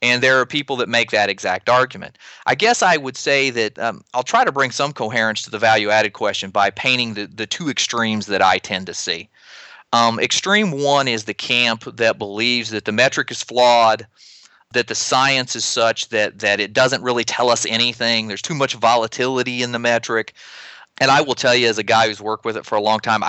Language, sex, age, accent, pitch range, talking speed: English, male, 30-49, American, 105-130 Hz, 220 wpm